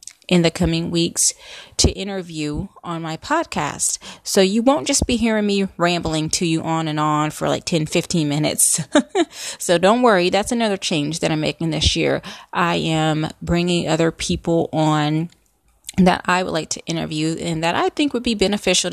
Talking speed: 180 wpm